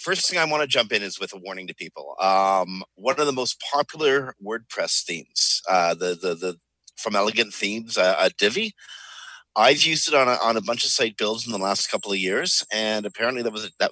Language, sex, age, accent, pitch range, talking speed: English, male, 50-69, American, 105-160 Hz, 225 wpm